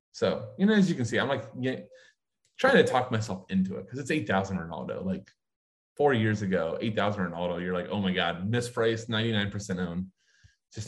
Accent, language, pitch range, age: American, English, 105-130 Hz, 20-39